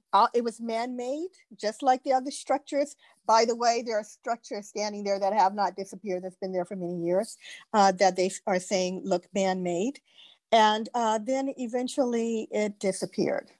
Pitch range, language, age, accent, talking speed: 195-265 Hz, English, 50-69, American, 175 wpm